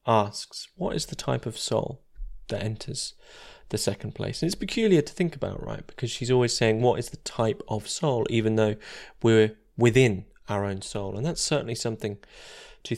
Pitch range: 110-135 Hz